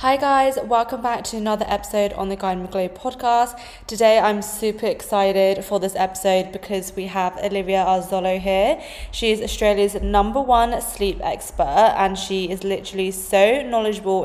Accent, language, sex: British, English, female